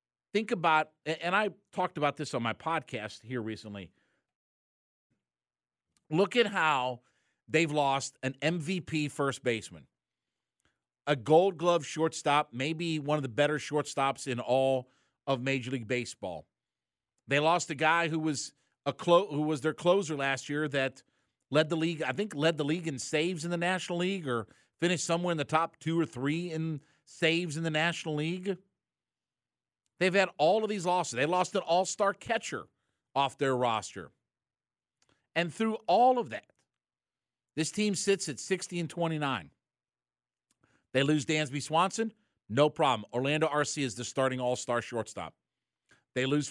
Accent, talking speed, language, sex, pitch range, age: American, 155 wpm, English, male, 135-165 Hz, 50-69